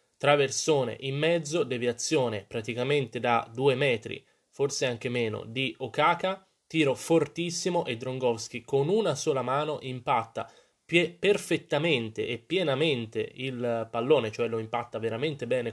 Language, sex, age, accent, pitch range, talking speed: Italian, male, 20-39, native, 110-135 Hz, 125 wpm